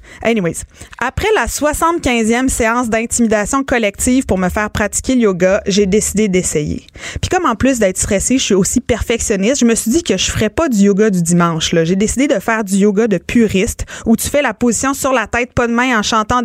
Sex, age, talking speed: female, 20-39, 225 wpm